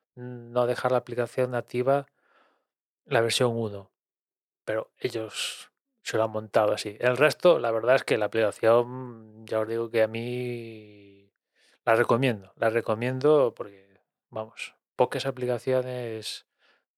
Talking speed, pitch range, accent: 130 wpm, 115-135 Hz, Spanish